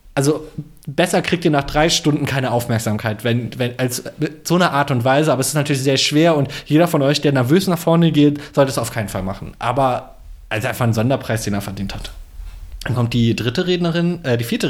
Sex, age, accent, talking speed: male, 20-39, German, 225 wpm